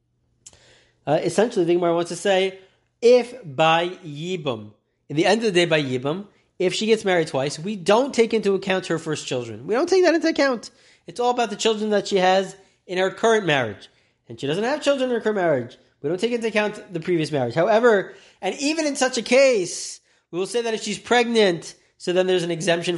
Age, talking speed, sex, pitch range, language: 30-49, 220 wpm, male, 175-255 Hz, English